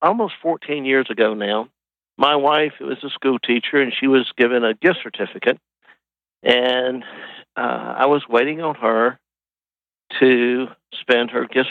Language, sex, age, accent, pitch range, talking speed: English, male, 60-79, American, 115-135 Hz, 150 wpm